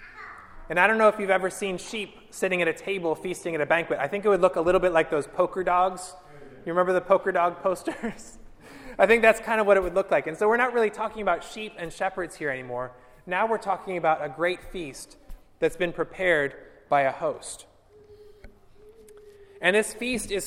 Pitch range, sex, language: 160-195 Hz, male, English